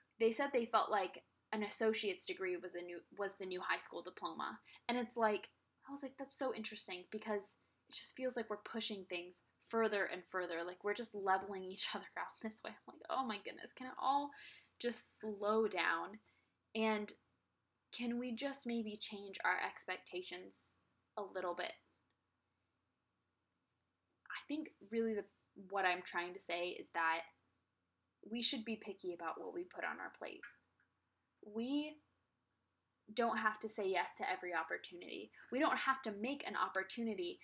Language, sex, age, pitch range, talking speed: English, female, 10-29, 180-235 Hz, 170 wpm